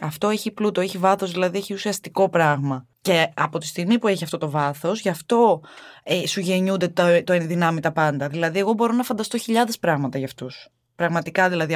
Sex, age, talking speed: female, 20-39, 200 wpm